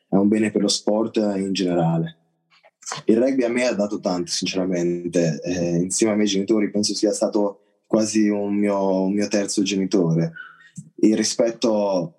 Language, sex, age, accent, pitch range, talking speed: Italian, male, 20-39, native, 95-110 Hz, 165 wpm